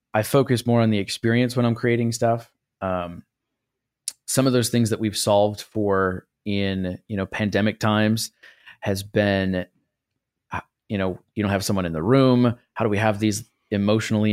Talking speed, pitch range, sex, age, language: 170 wpm, 95-115 Hz, male, 30-49, English